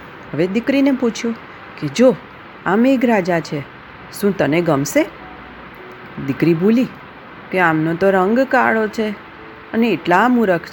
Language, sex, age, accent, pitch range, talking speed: Gujarati, female, 40-59, native, 160-230 Hz, 125 wpm